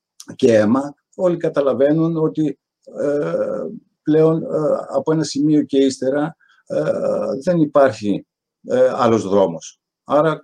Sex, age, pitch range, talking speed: male, 50-69, 110-160 Hz, 90 wpm